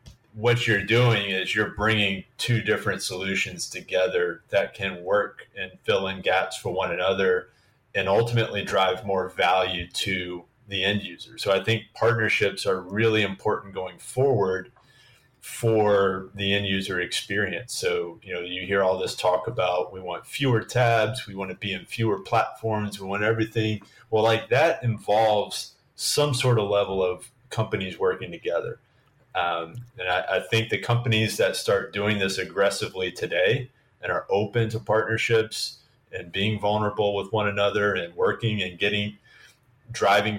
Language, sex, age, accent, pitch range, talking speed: English, male, 30-49, American, 95-125 Hz, 160 wpm